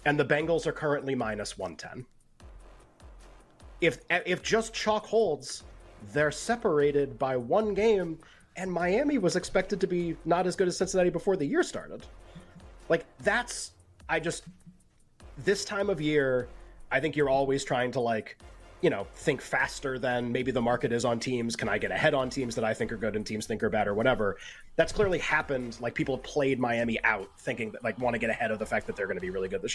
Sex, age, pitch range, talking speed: male, 30-49, 120-170 Hz, 205 wpm